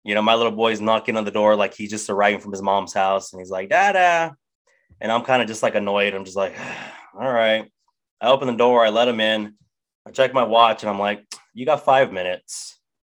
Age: 20-39